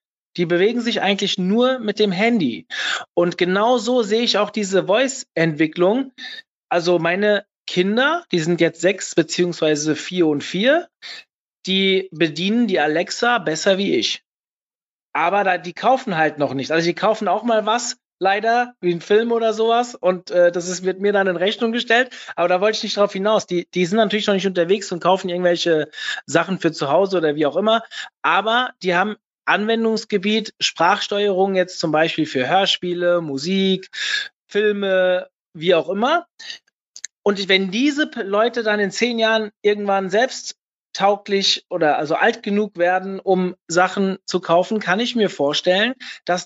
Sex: male